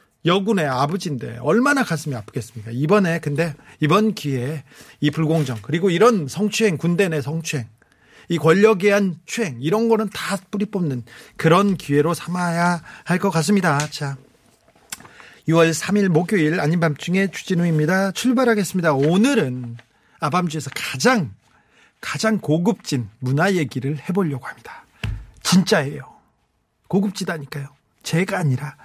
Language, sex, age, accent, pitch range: Korean, male, 40-59, native, 135-195 Hz